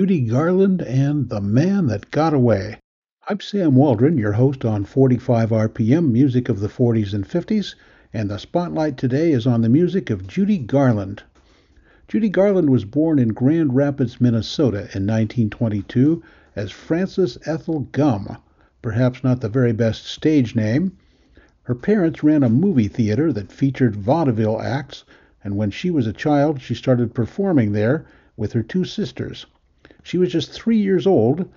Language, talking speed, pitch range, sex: English, 160 wpm, 110-145 Hz, male